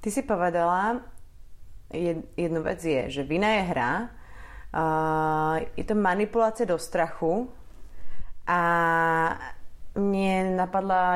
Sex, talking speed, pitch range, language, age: female, 110 wpm, 170-210 Hz, Slovak, 30-49